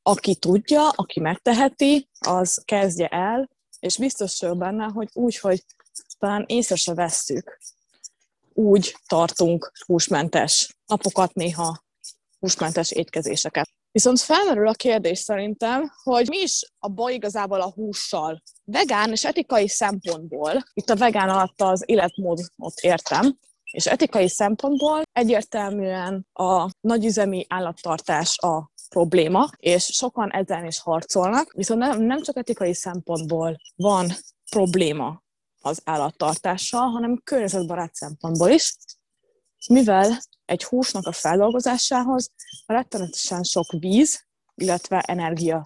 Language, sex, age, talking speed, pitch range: Hungarian, female, 20-39, 110 wpm, 175-240 Hz